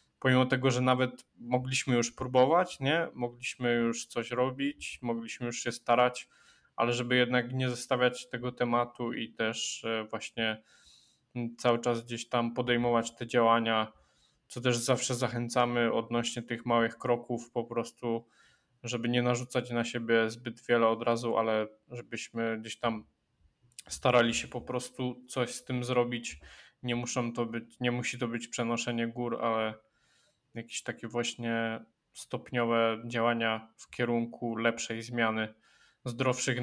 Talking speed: 140 wpm